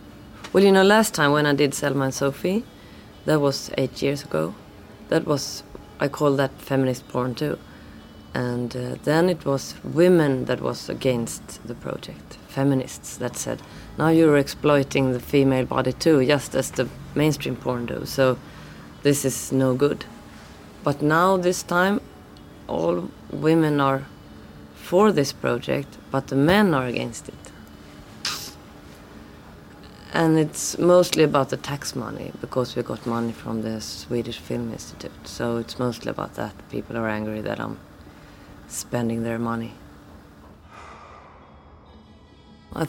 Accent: Swedish